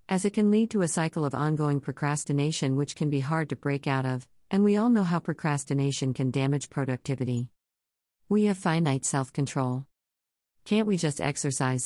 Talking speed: 175 wpm